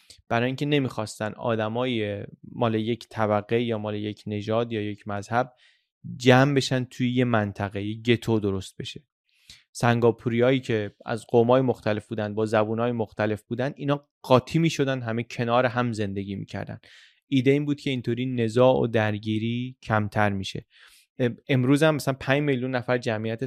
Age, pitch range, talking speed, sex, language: 20-39, 110-135 Hz, 150 wpm, male, Persian